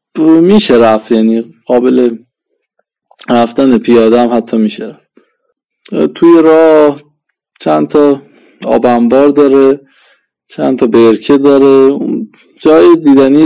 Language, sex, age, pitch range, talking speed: Persian, male, 20-39, 115-150 Hz, 100 wpm